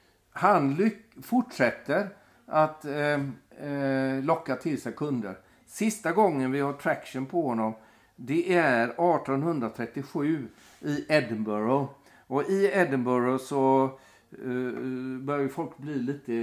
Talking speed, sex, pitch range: 115 wpm, male, 120-150 Hz